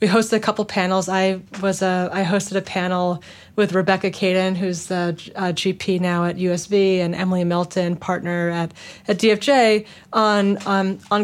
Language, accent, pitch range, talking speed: English, American, 180-210 Hz, 160 wpm